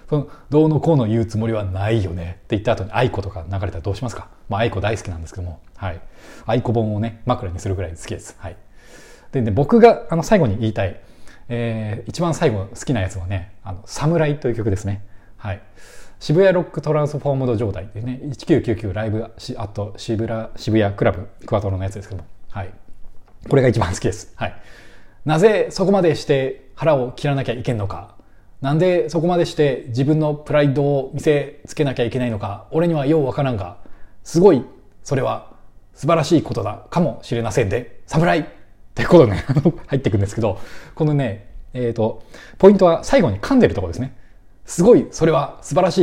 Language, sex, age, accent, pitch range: Japanese, male, 20-39, native, 100-145 Hz